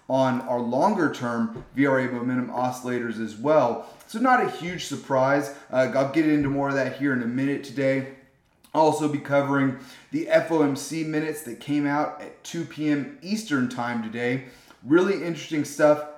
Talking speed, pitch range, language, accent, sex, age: 165 wpm, 130-160 Hz, English, American, male, 30-49